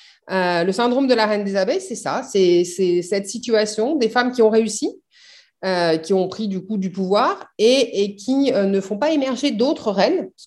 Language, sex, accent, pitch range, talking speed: French, female, French, 170-240 Hz, 220 wpm